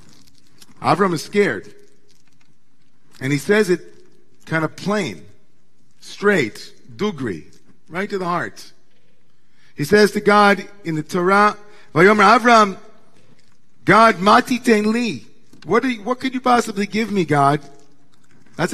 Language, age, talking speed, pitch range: English, 50-69, 105 wpm, 155-210 Hz